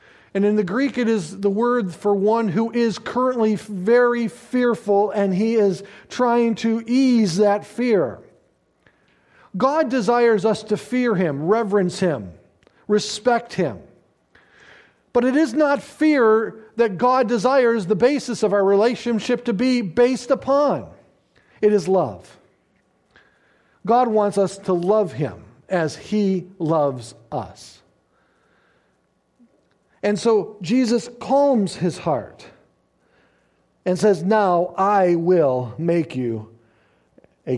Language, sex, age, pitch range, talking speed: English, male, 50-69, 140-225 Hz, 125 wpm